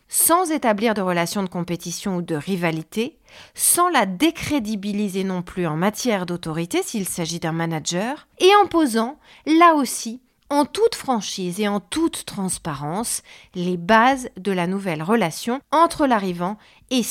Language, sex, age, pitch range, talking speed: French, female, 40-59, 180-255 Hz, 145 wpm